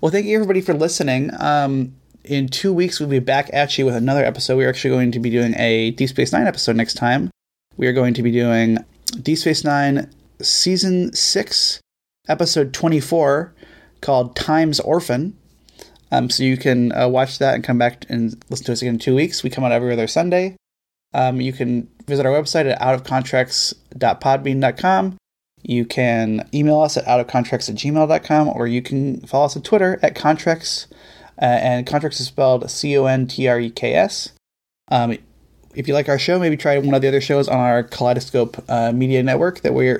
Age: 20-39